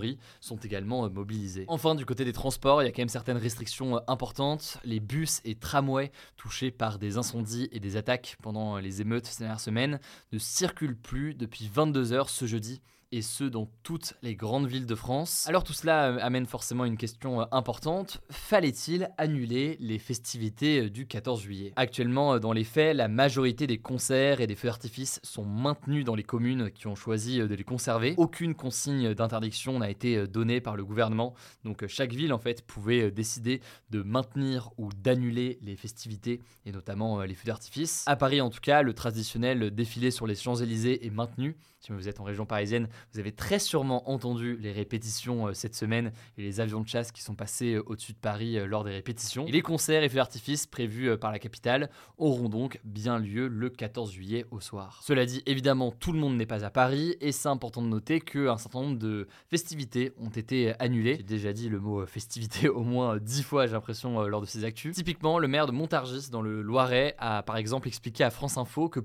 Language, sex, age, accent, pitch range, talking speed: French, male, 20-39, French, 110-135 Hz, 200 wpm